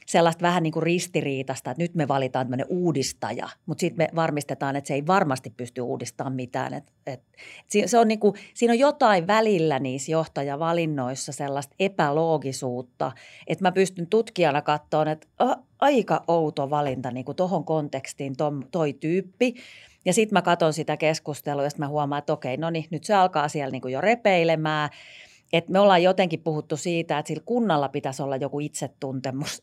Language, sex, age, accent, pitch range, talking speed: Finnish, female, 40-59, native, 145-175 Hz, 175 wpm